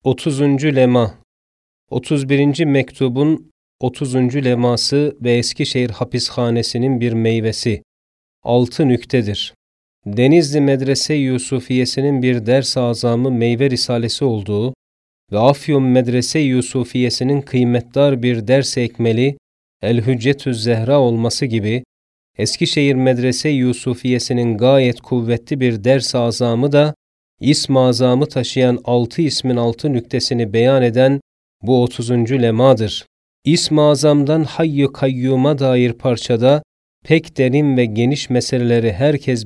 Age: 40-59